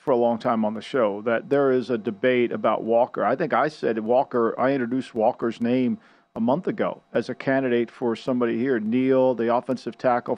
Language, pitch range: English, 120-140 Hz